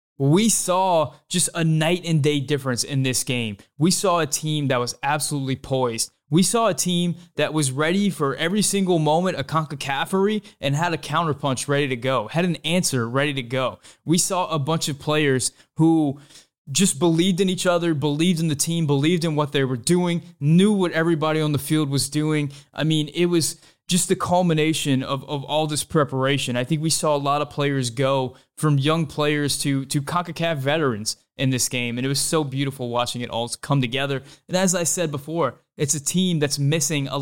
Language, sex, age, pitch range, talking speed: English, male, 20-39, 130-165 Hz, 205 wpm